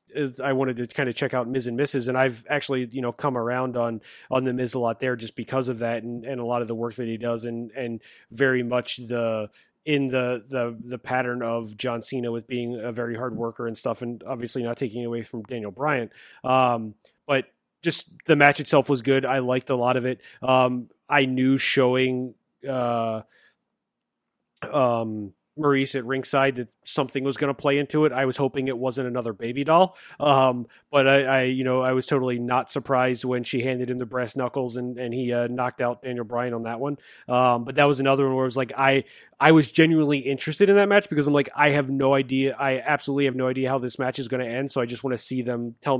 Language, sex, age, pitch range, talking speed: English, male, 30-49, 120-135 Hz, 235 wpm